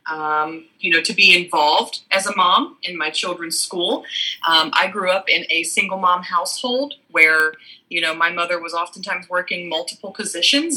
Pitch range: 160-220 Hz